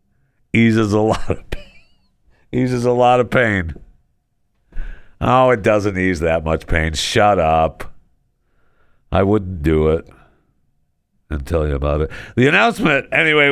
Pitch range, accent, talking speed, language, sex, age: 90-150 Hz, American, 140 wpm, English, male, 60-79